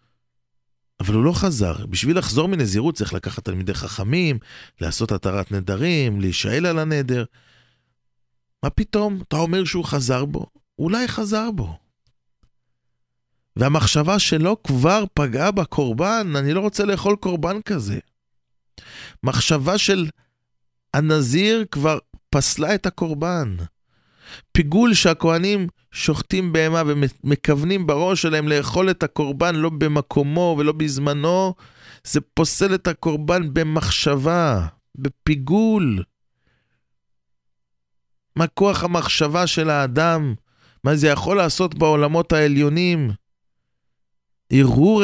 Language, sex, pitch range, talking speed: English, male, 110-175 Hz, 95 wpm